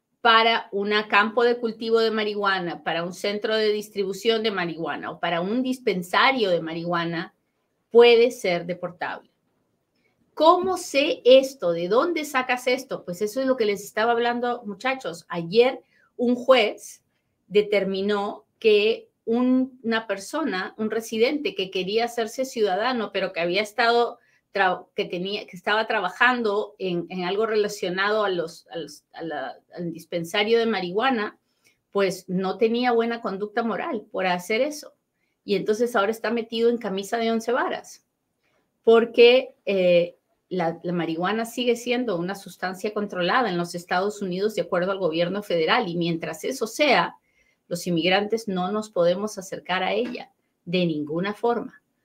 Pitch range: 185-235 Hz